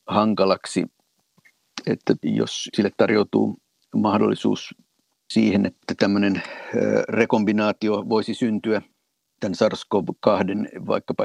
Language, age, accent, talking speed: Finnish, 50-69, native, 80 wpm